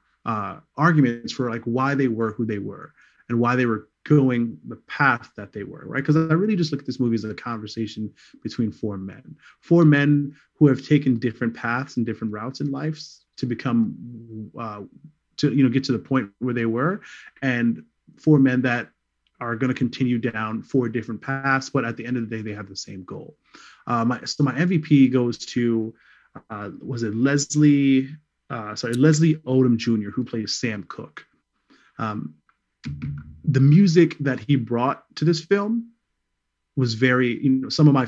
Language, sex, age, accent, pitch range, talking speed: English, male, 30-49, American, 115-145 Hz, 185 wpm